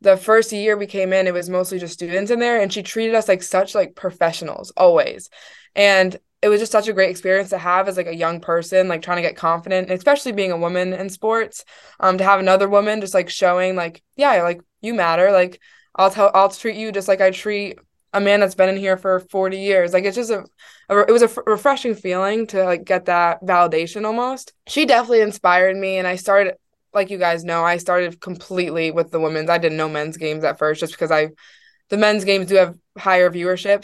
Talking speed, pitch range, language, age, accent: 235 wpm, 175-200 Hz, English, 20-39, American